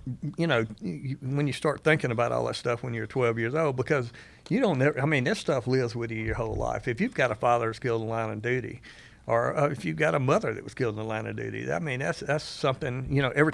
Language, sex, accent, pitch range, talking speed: English, male, American, 115-130 Hz, 280 wpm